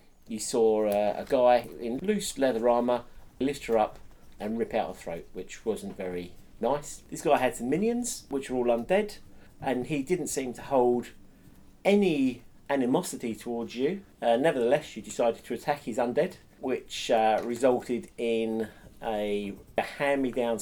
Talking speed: 160 wpm